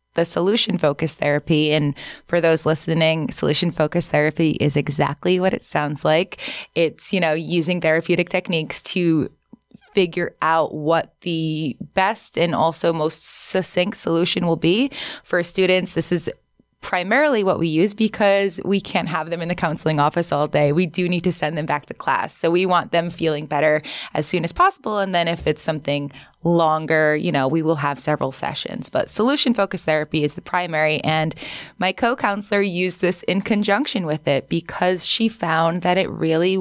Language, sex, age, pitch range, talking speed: English, female, 20-39, 160-190 Hz, 180 wpm